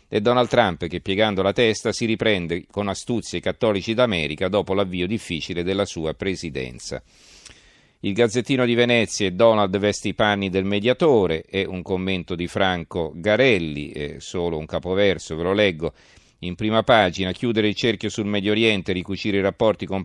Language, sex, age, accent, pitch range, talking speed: Italian, male, 40-59, native, 85-105 Hz, 175 wpm